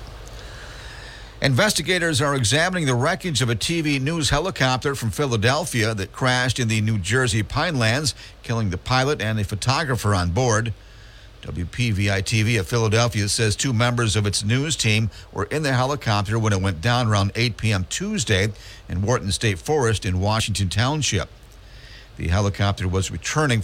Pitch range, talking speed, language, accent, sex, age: 100-125 Hz, 155 wpm, English, American, male, 50-69